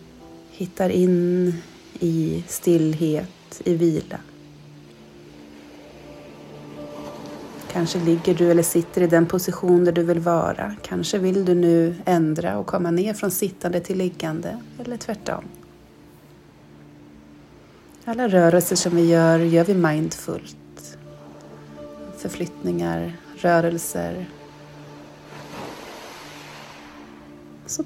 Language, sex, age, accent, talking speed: Swedish, female, 30-49, native, 95 wpm